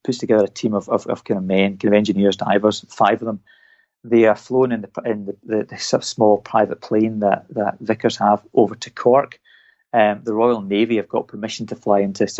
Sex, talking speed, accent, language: male, 235 wpm, British, English